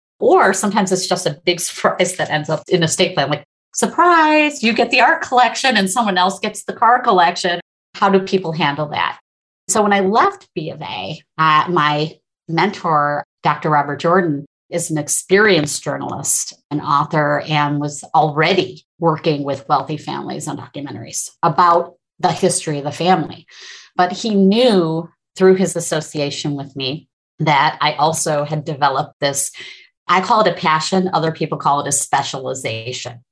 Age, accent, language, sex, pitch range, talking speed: 30-49, American, English, female, 150-185 Hz, 165 wpm